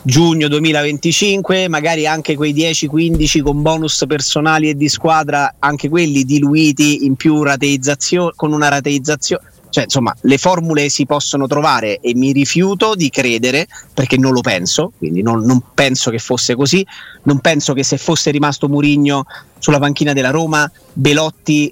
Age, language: 30-49, Italian